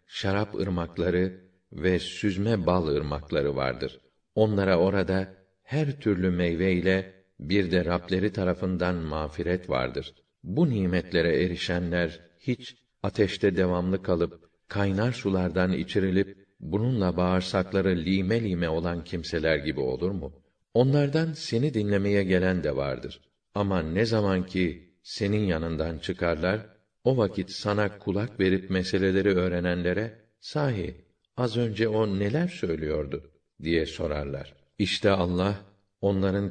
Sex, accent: male, native